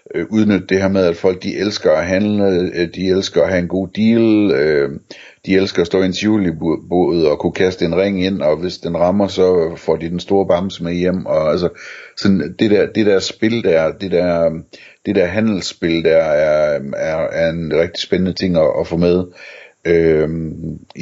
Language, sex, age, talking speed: Danish, male, 60-79, 195 wpm